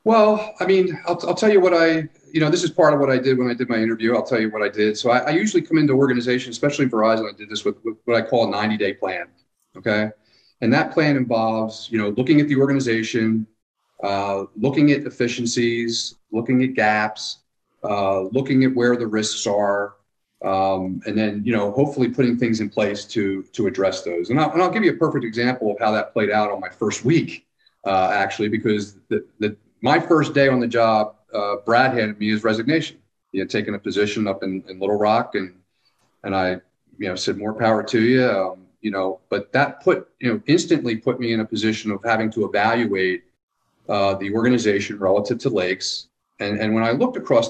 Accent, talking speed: American, 220 wpm